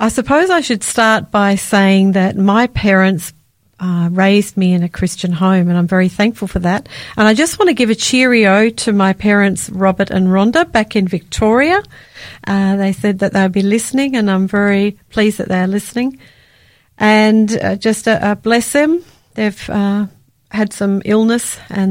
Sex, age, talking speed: female, 40-59, 180 wpm